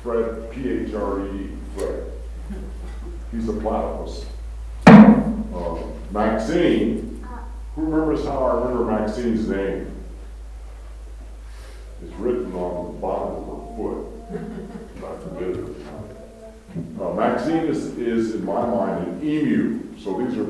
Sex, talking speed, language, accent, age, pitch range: female, 100 wpm, English, American, 50-69, 90-135 Hz